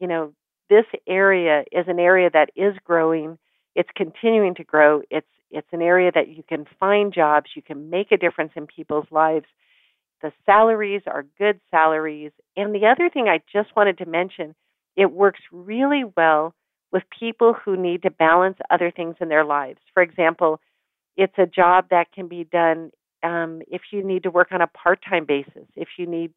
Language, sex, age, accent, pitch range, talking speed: English, female, 50-69, American, 160-195 Hz, 185 wpm